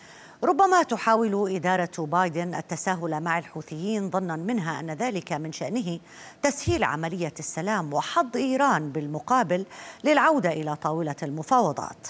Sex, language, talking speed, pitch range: female, Arabic, 115 wpm, 155-210 Hz